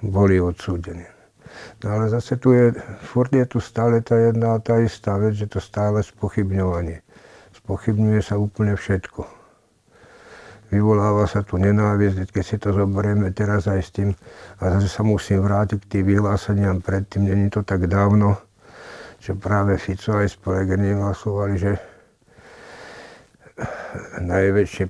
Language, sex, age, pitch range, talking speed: Slovak, male, 60-79, 100-115 Hz, 140 wpm